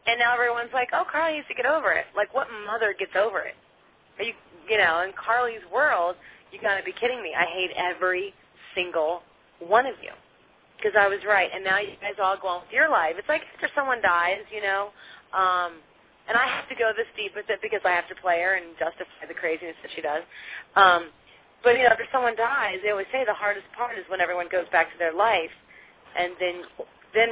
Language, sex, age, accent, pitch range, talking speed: English, female, 30-49, American, 175-225 Hz, 230 wpm